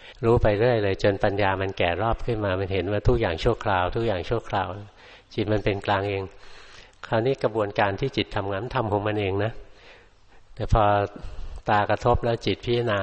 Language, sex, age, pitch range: Thai, male, 60-79, 95-110 Hz